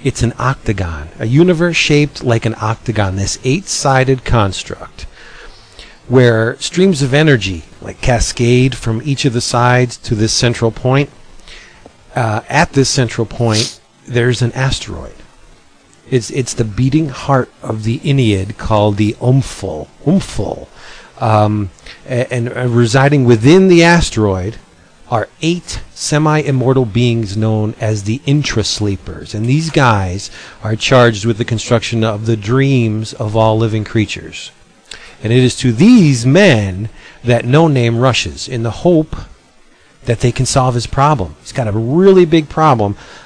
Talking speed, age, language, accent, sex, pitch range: 140 wpm, 40-59, English, American, male, 110-135 Hz